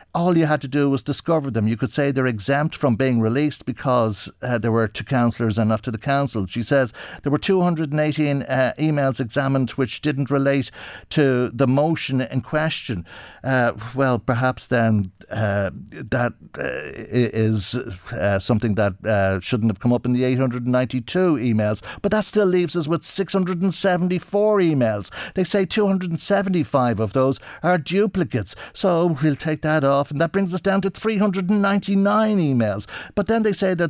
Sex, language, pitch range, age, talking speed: male, English, 120-170 Hz, 50-69, 170 wpm